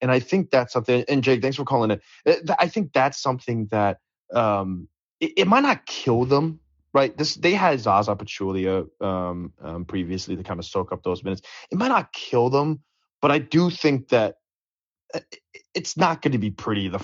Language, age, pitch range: English, 20-39, 100-140 Hz